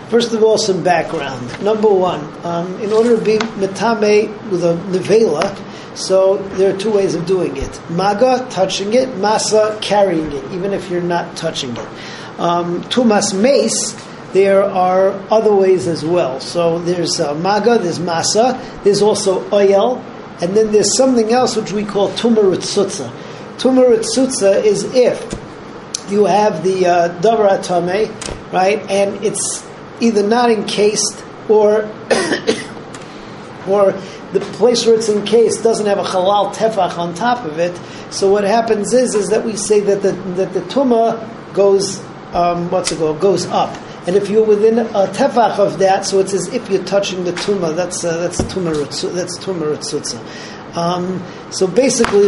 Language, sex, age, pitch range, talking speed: English, male, 50-69, 180-215 Hz, 155 wpm